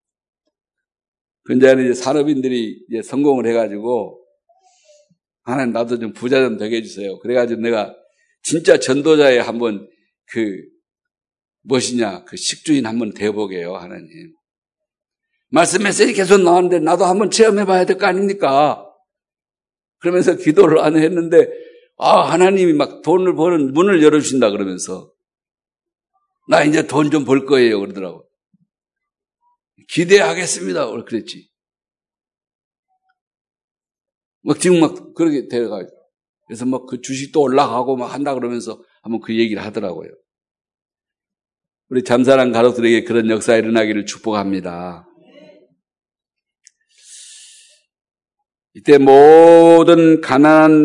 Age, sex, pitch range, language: 60-79, male, 120-195 Hz, Korean